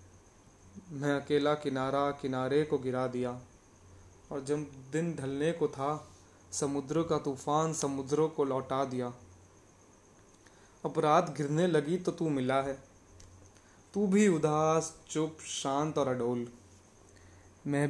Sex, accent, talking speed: male, native, 115 wpm